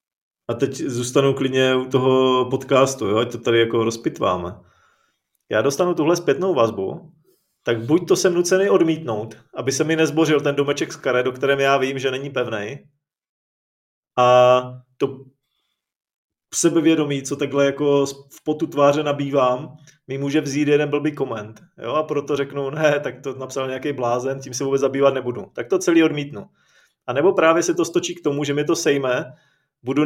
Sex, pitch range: male, 130-155 Hz